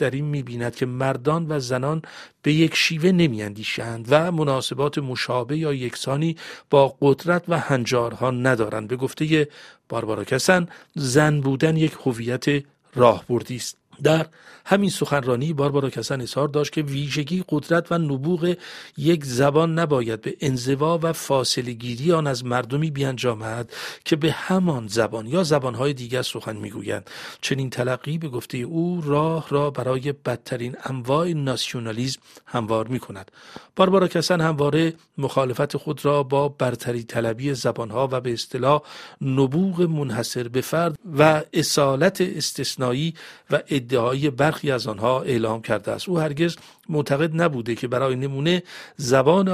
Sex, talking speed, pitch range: male, 140 wpm, 125-160 Hz